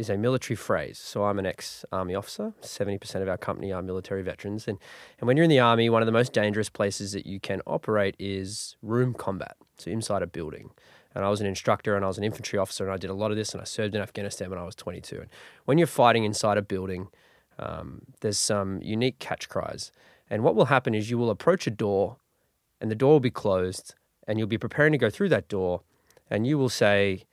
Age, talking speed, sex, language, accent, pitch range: 20-39, 240 wpm, male, English, Australian, 100-120 Hz